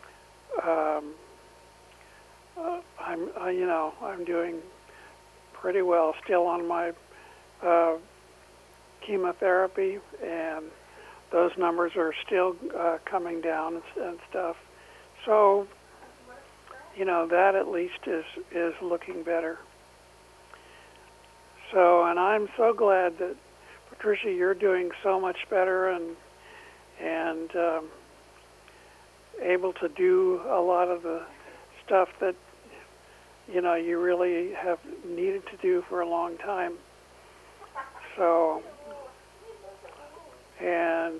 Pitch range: 170-195 Hz